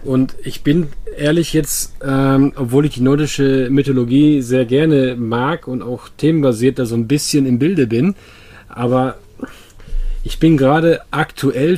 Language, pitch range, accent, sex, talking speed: German, 125-145 Hz, German, male, 150 wpm